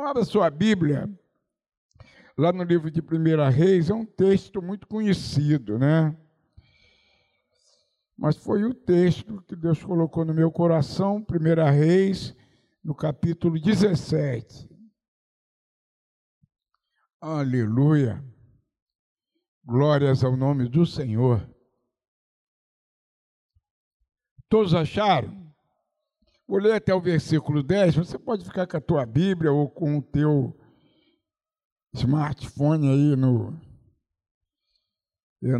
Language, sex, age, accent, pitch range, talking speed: Portuguese, male, 60-79, Brazilian, 140-190 Hz, 100 wpm